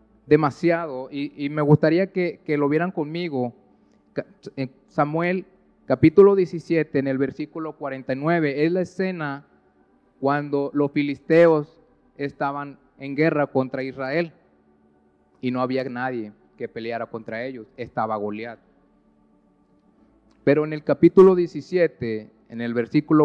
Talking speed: 120 wpm